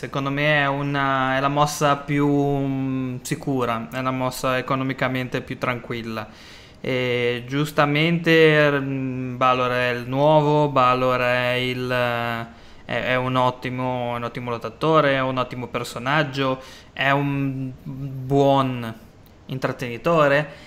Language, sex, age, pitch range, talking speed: Italian, male, 20-39, 125-150 Hz, 110 wpm